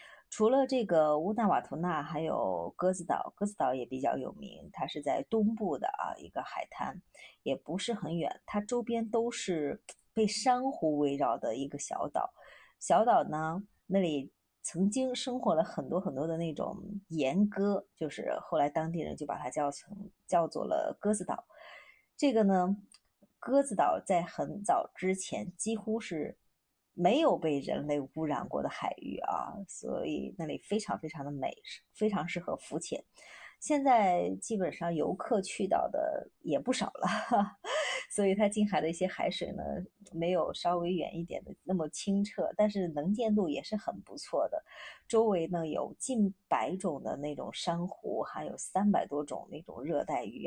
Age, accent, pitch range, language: 30-49, native, 160-215 Hz, Chinese